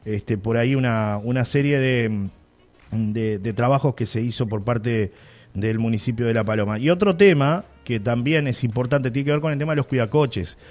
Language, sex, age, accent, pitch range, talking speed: Spanish, male, 30-49, Argentinian, 120-155 Hz, 205 wpm